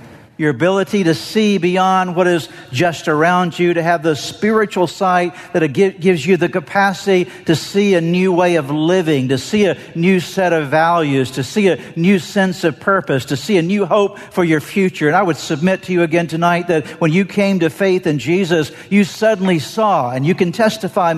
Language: English